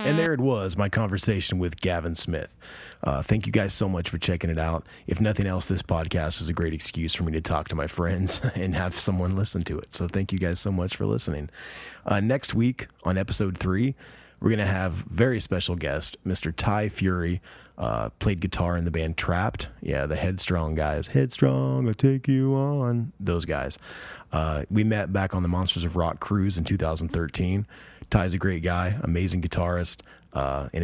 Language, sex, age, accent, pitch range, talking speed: English, male, 30-49, American, 85-105 Hz, 200 wpm